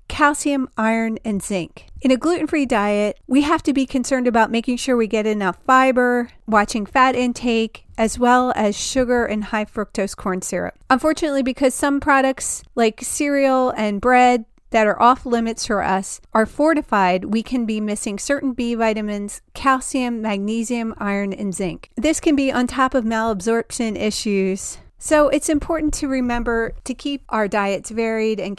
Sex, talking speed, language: female, 165 wpm, English